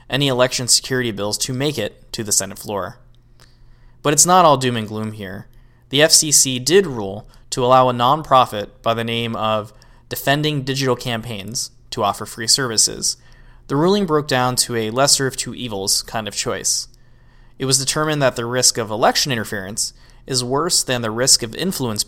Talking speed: 180 wpm